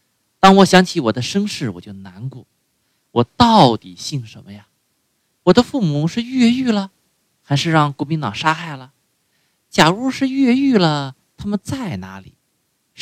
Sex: male